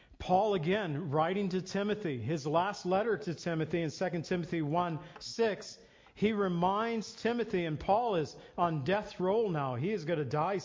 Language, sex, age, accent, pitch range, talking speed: English, male, 50-69, American, 150-190 Hz, 170 wpm